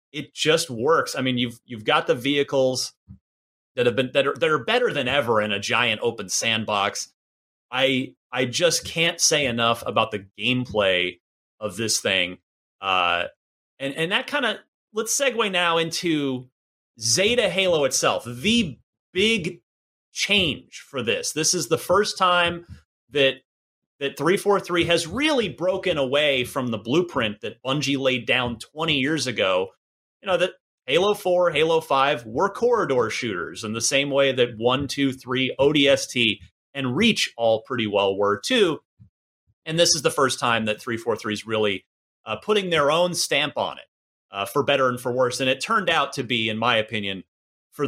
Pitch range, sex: 115-180 Hz, male